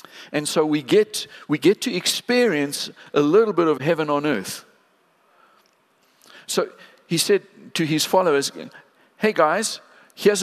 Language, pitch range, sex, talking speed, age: English, 125-170 Hz, male, 140 wpm, 50-69